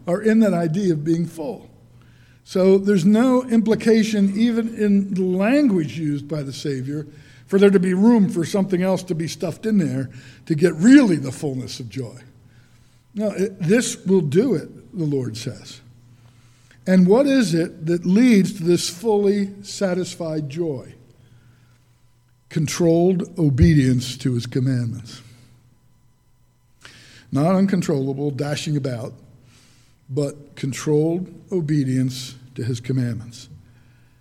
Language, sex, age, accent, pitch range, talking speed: English, male, 60-79, American, 125-185 Hz, 130 wpm